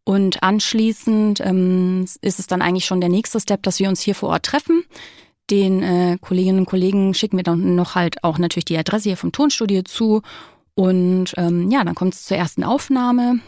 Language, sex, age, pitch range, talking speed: German, female, 30-49, 185-230 Hz, 200 wpm